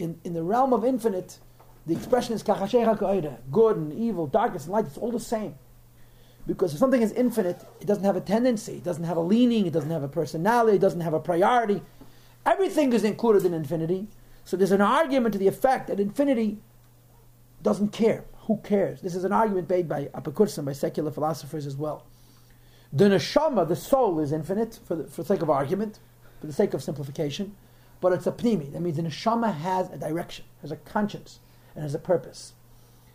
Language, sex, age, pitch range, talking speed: English, male, 40-59, 150-215 Hz, 195 wpm